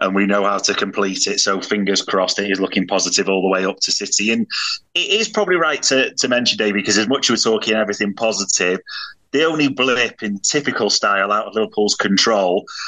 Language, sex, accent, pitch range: English, male, British, 105-130 Hz